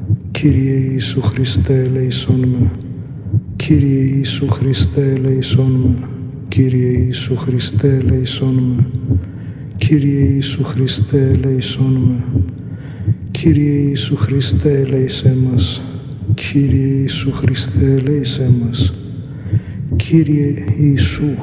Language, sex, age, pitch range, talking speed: Greek, male, 50-69, 125-135 Hz, 75 wpm